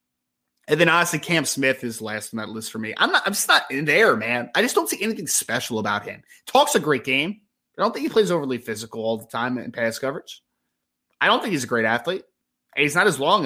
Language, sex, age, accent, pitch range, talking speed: English, male, 20-39, American, 120-185 Hz, 255 wpm